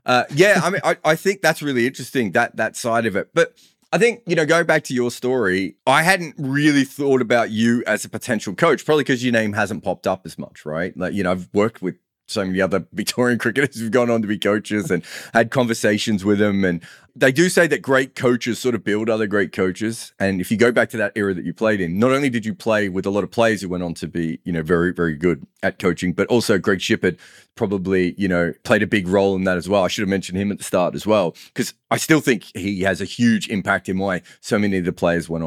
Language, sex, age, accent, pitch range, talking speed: English, male, 30-49, Australian, 90-125 Hz, 265 wpm